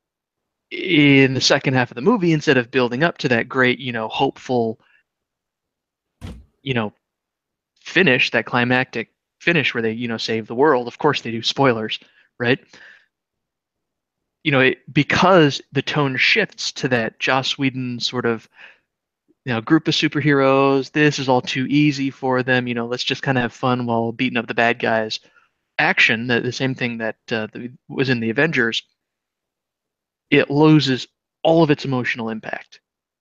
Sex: male